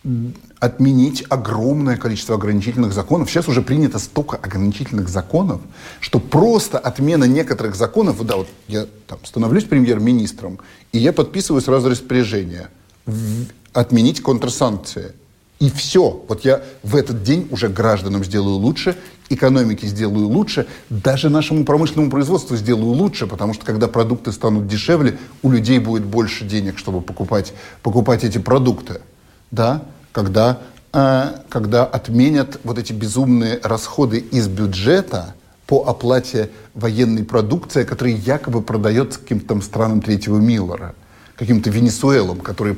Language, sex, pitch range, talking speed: Russian, male, 105-130 Hz, 125 wpm